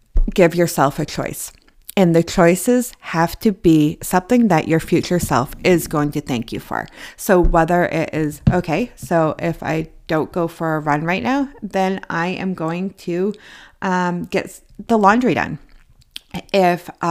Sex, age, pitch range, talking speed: female, 30-49, 175-215 Hz, 165 wpm